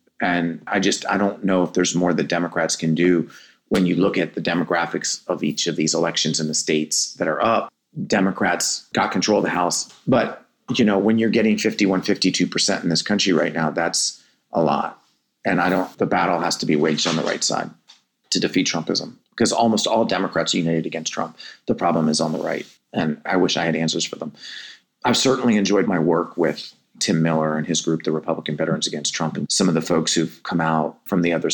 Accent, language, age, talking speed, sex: American, English, 30-49, 225 wpm, male